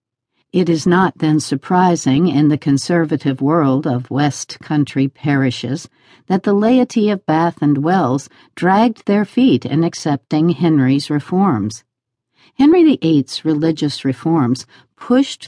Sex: female